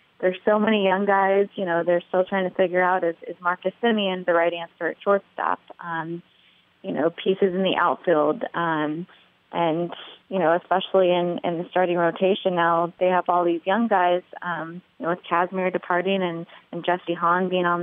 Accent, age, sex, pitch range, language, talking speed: American, 20-39, female, 175-195 Hz, English, 195 wpm